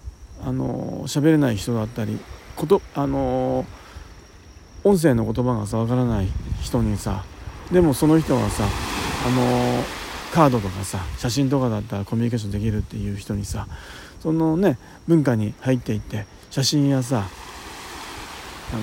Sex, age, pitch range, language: male, 40-59, 95-140 Hz, Japanese